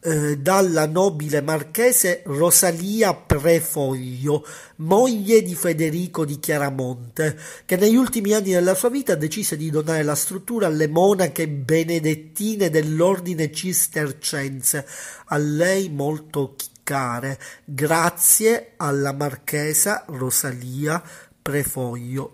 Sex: male